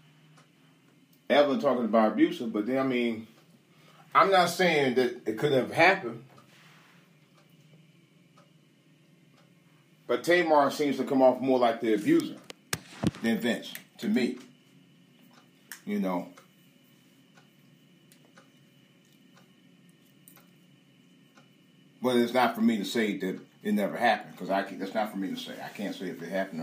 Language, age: English, 40-59